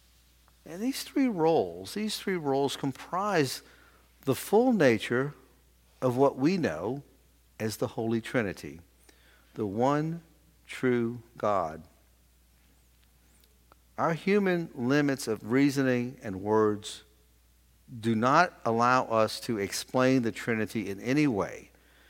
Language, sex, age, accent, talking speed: English, male, 50-69, American, 110 wpm